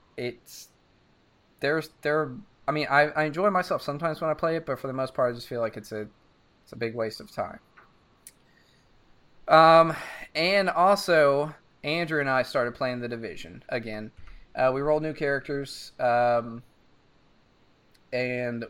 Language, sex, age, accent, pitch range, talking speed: English, male, 20-39, American, 120-145 Hz, 155 wpm